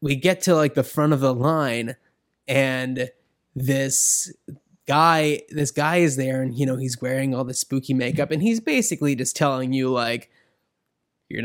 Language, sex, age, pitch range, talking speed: English, male, 20-39, 140-190 Hz, 175 wpm